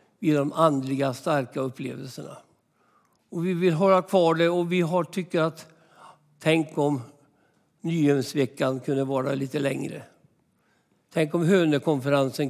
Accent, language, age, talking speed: native, Swedish, 60-79, 125 wpm